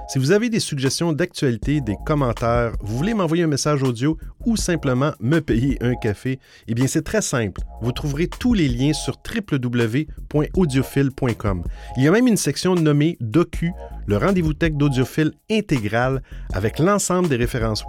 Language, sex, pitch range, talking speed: French, male, 105-155 Hz, 165 wpm